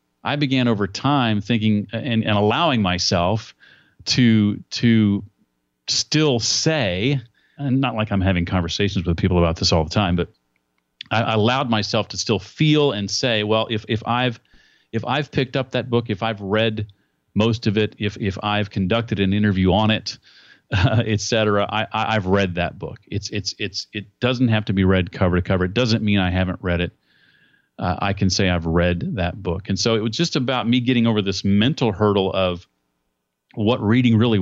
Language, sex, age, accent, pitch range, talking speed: English, male, 40-59, American, 90-115 Hz, 190 wpm